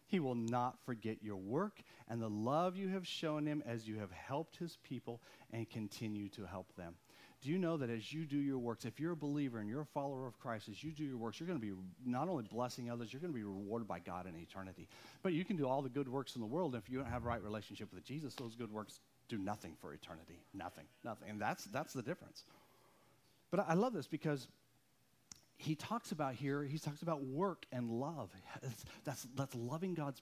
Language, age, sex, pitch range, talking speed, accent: English, 40-59, male, 125-195 Hz, 240 wpm, American